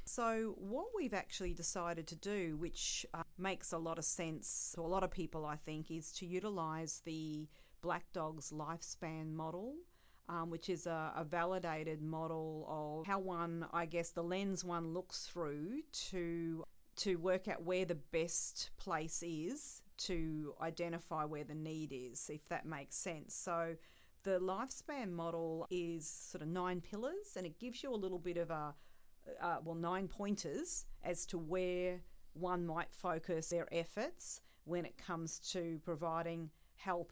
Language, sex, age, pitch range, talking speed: English, female, 40-59, 160-185 Hz, 165 wpm